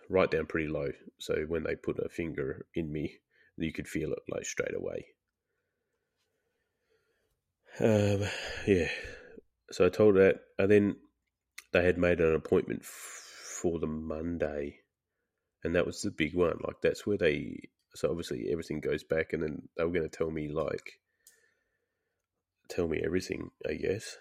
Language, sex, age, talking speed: English, male, 30-49, 160 wpm